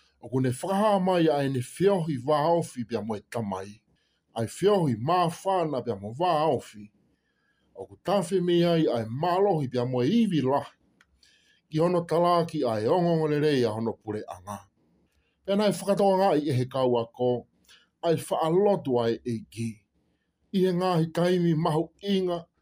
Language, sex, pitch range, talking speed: English, male, 110-175 Hz, 120 wpm